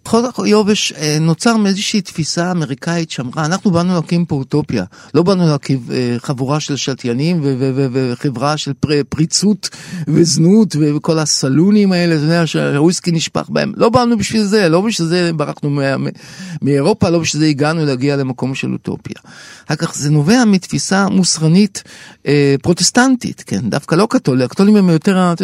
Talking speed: 155 wpm